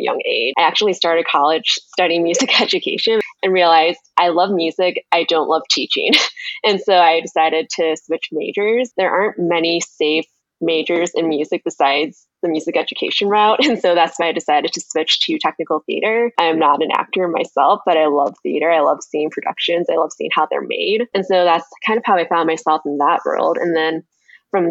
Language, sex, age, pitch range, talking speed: English, female, 10-29, 160-205 Hz, 200 wpm